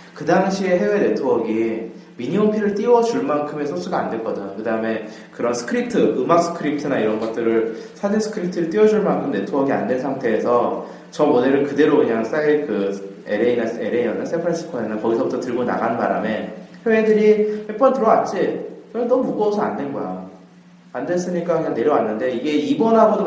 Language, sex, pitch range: Korean, male, 140-205 Hz